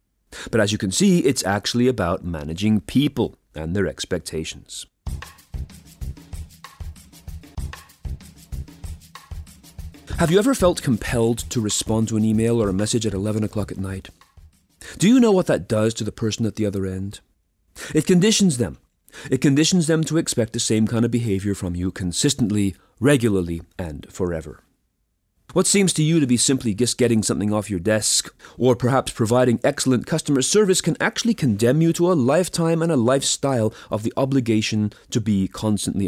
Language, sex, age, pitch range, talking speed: English, male, 30-49, 95-145 Hz, 165 wpm